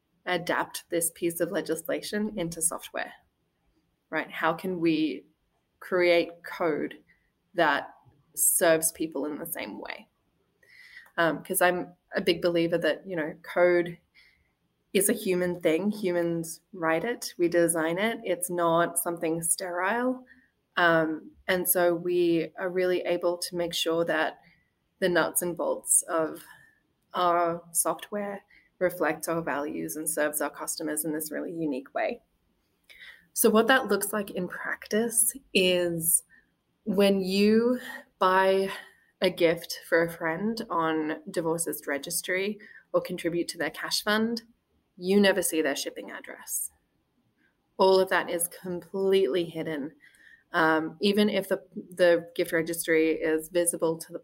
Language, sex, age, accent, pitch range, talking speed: English, female, 20-39, Australian, 165-195 Hz, 135 wpm